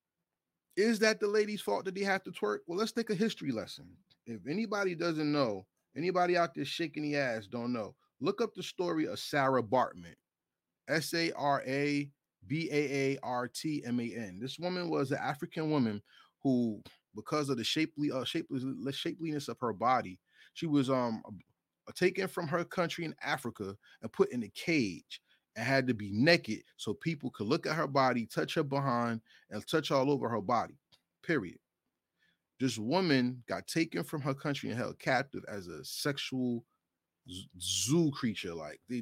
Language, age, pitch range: English, 30-49, 120-165 Hz